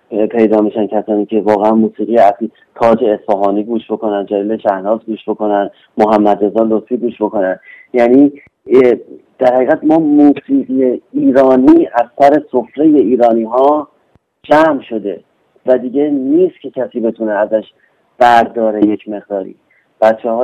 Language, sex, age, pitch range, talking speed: Persian, male, 40-59, 110-135 Hz, 130 wpm